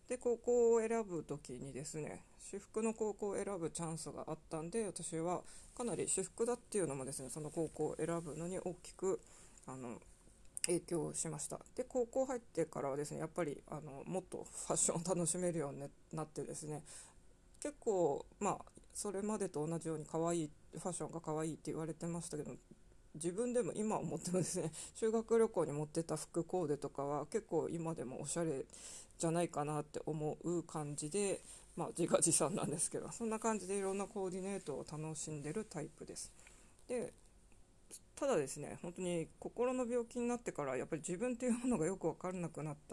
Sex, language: female, Japanese